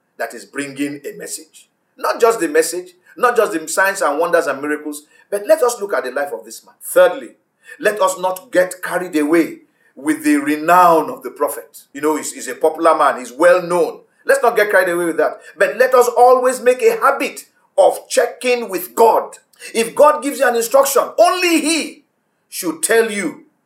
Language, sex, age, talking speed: English, male, 50-69, 200 wpm